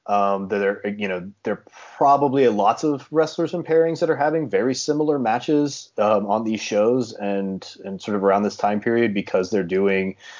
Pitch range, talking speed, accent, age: 100-145 Hz, 190 wpm, American, 30-49